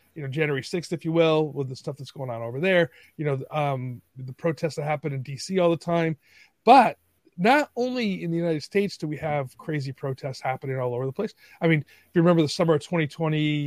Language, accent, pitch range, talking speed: English, American, 130-160 Hz, 235 wpm